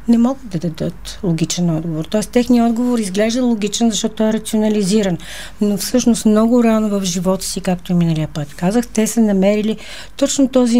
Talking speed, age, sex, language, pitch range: 170 wpm, 40-59, female, Bulgarian, 175-225 Hz